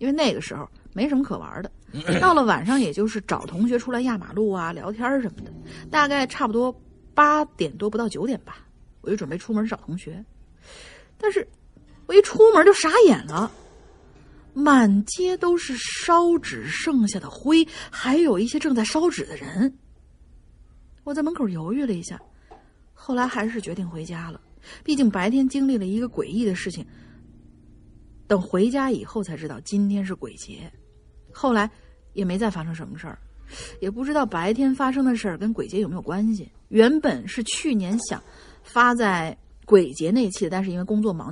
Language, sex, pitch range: Chinese, female, 195-265 Hz